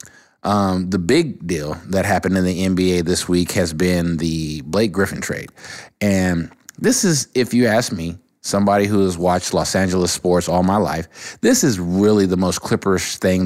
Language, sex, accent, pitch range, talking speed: English, male, American, 85-100 Hz, 185 wpm